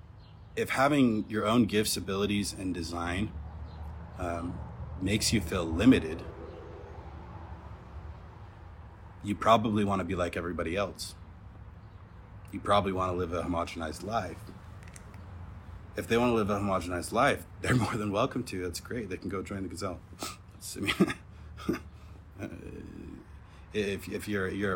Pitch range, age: 90-105 Hz, 30-49